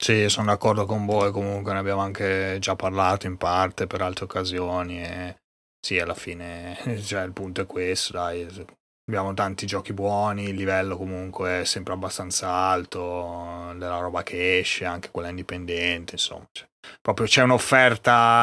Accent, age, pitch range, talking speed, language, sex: native, 20-39, 95-110 Hz, 160 wpm, Italian, male